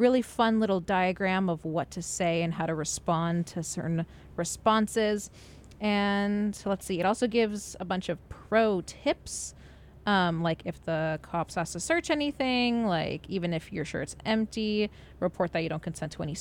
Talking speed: 180 wpm